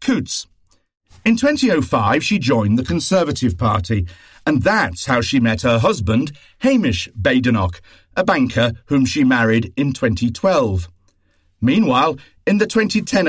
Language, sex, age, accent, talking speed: English, male, 50-69, British, 125 wpm